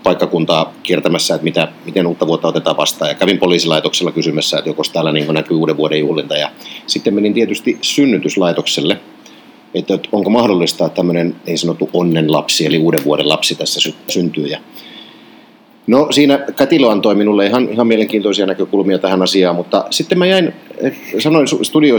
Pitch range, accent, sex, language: 90-145 Hz, native, male, Finnish